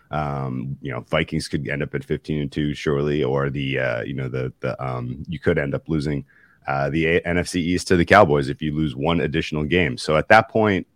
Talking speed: 230 wpm